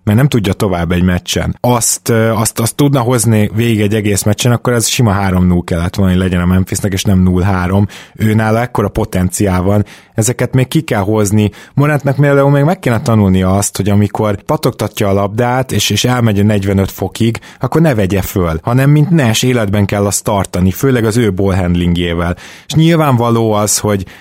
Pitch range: 95-120 Hz